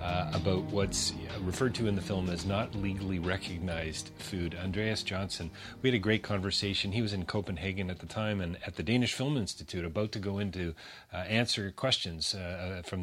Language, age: English, 40-59